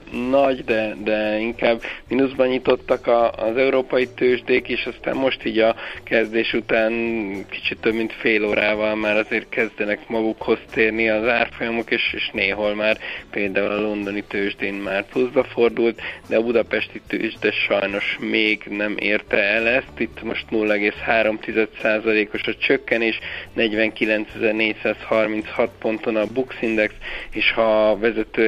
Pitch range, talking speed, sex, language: 105-115 Hz, 135 wpm, male, Hungarian